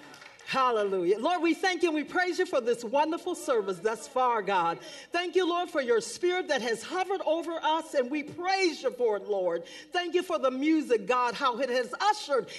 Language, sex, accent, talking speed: English, female, American, 210 wpm